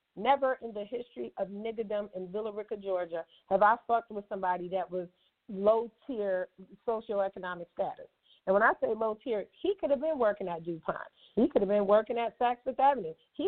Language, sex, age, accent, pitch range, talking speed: English, female, 40-59, American, 185-225 Hz, 185 wpm